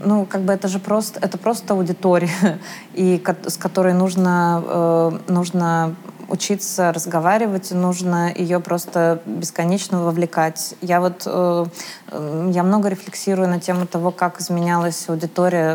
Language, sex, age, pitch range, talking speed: Russian, female, 20-39, 165-185 Hz, 115 wpm